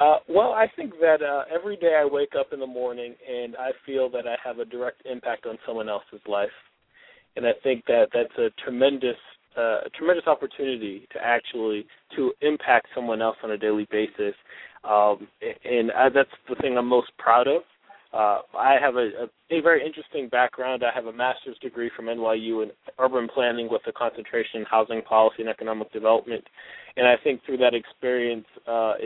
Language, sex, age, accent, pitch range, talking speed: English, male, 20-39, American, 115-135 Hz, 190 wpm